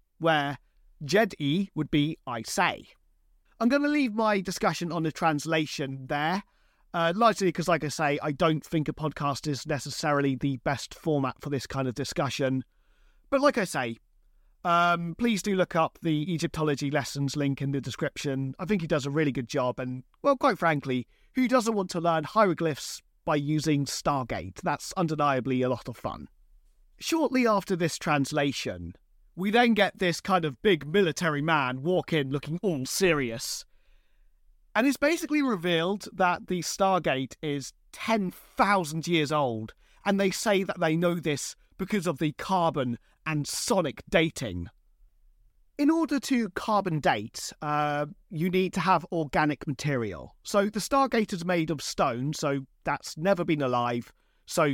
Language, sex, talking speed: English, male, 160 wpm